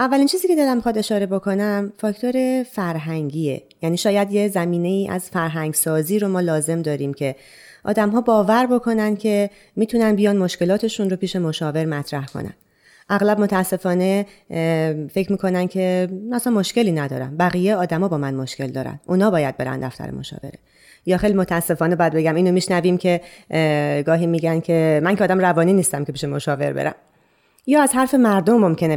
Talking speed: 165 wpm